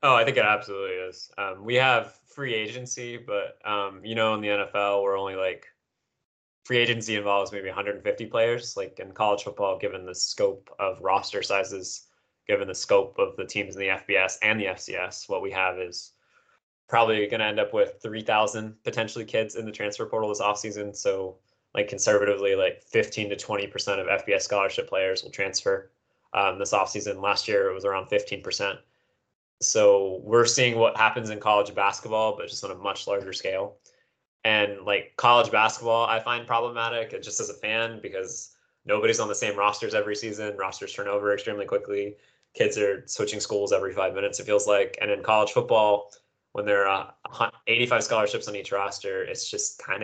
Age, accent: 20-39, American